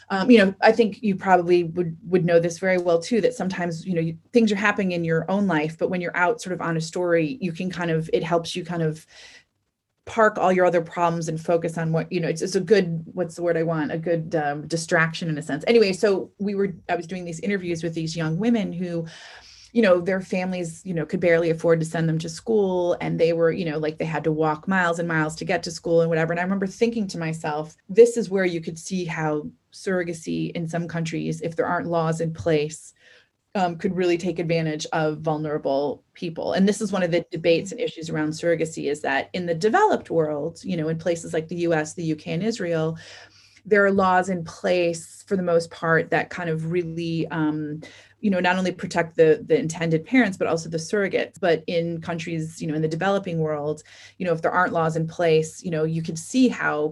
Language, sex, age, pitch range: English, female, 30-49, 160-185 Hz